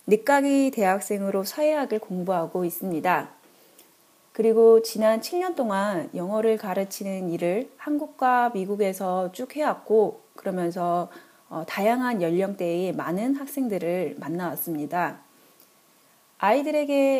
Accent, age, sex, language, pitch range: native, 30-49, female, Korean, 185-265 Hz